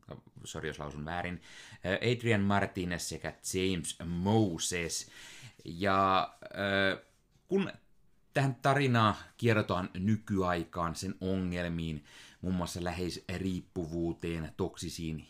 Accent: native